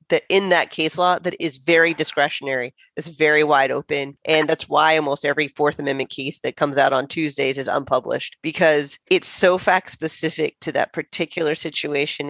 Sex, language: female, English